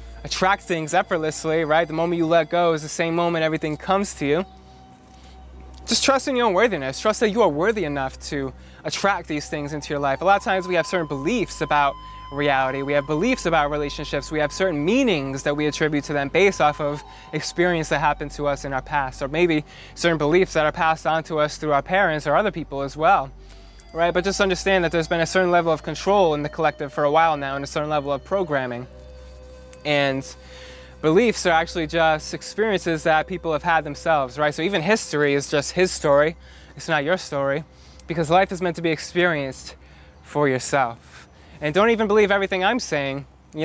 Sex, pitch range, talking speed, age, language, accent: male, 140-170 Hz, 210 wpm, 20-39, English, American